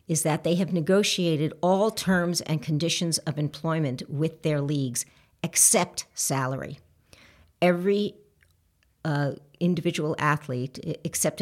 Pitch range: 140-170 Hz